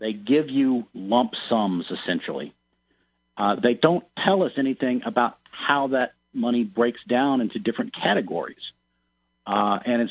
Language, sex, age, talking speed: English, male, 50-69, 140 wpm